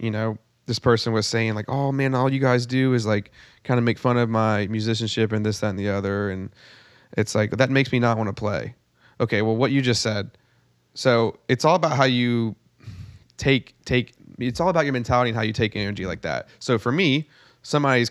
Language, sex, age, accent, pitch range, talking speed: English, male, 30-49, American, 105-120 Hz, 225 wpm